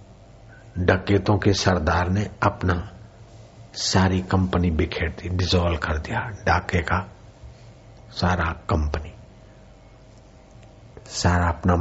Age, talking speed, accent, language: 60-79, 90 wpm, native, Hindi